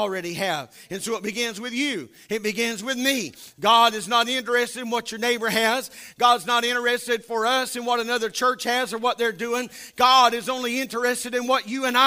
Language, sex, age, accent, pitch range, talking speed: English, male, 40-59, American, 220-265 Hz, 215 wpm